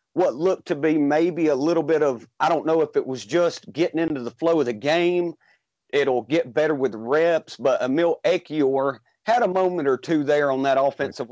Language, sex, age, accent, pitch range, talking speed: English, male, 40-59, American, 130-160 Hz, 210 wpm